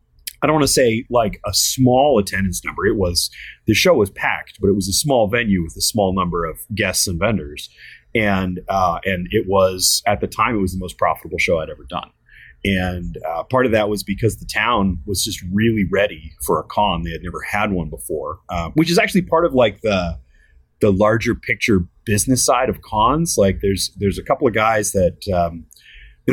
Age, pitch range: 30-49, 90-115 Hz